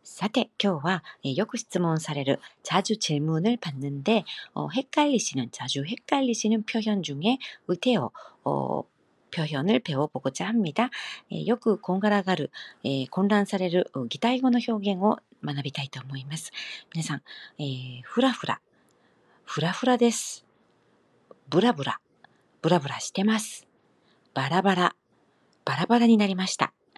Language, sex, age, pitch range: Korean, female, 40-59, 150-225 Hz